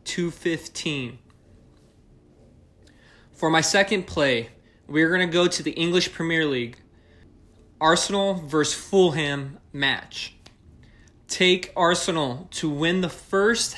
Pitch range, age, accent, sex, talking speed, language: 125-175 Hz, 20-39, American, male, 115 wpm, English